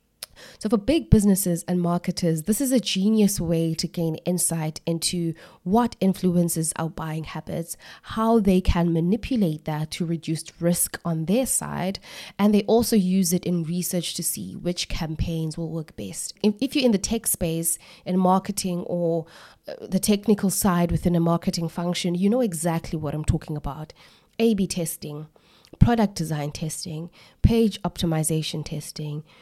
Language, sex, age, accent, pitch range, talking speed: English, female, 20-39, South African, 165-205 Hz, 155 wpm